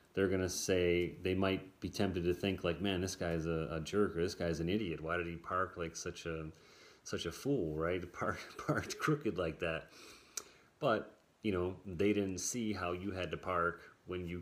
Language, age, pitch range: English, 30-49, 85-95 Hz